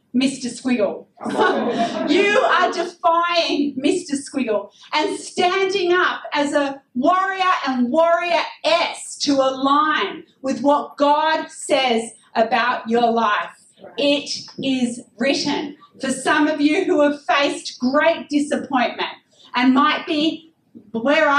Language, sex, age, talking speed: English, female, 40-59, 115 wpm